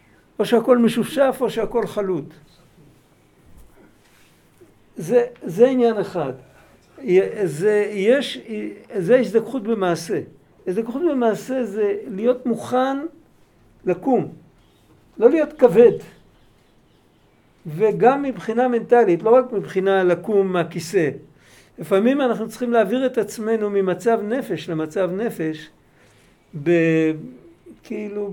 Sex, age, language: male, 50-69, Hebrew